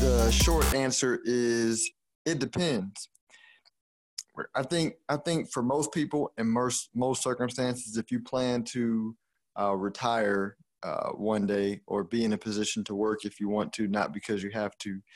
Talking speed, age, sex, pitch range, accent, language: 165 wpm, 20-39, male, 100-120 Hz, American, English